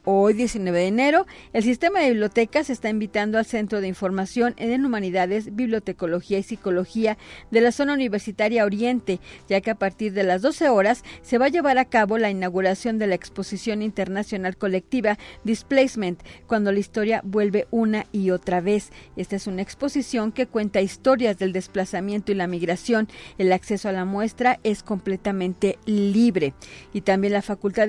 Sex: female